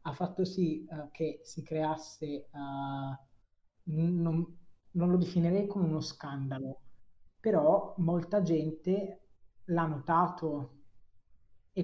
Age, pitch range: 20-39, 150-175 Hz